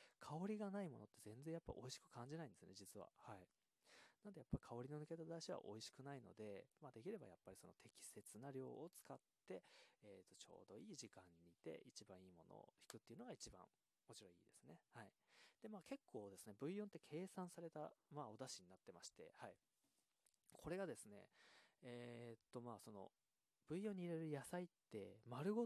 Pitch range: 105-165 Hz